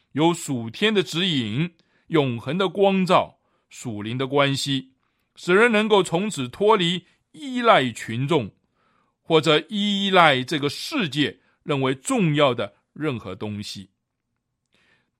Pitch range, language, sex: 130-185 Hz, Chinese, male